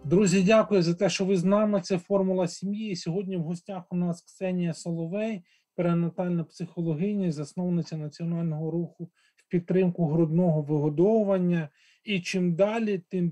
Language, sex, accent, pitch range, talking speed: Ukrainian, male, native, 160-195 Hz, 145 wpm